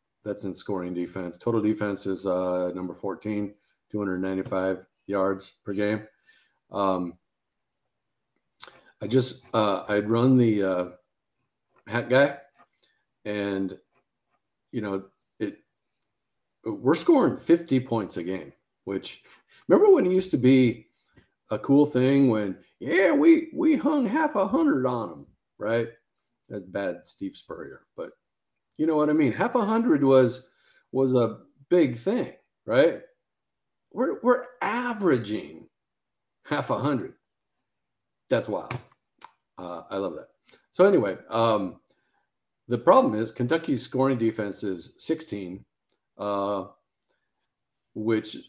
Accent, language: American, English